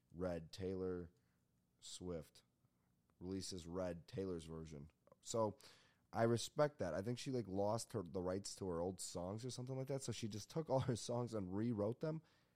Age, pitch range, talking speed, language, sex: 30-49, 85-120 Hz, 175 wpm, English, male